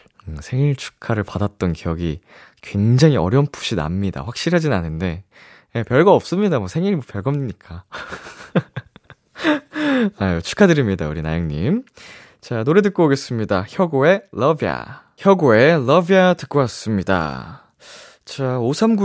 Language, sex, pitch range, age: Korean, male, 95-155 Hz, 20-39